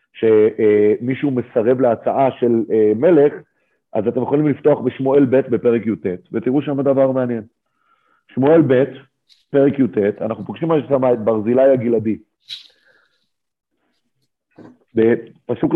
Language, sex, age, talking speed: Hebrew, male, 40-59, 115 wpm